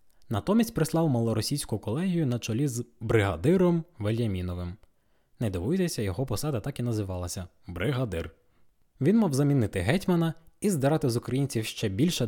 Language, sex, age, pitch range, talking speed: Ukrainian, male, 20-39, 105-155 Hz, 135 wpm